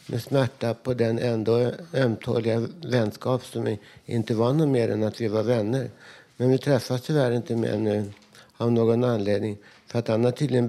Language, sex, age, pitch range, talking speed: Swedish, male, 60-79, 110-130 Hz, 180 wpm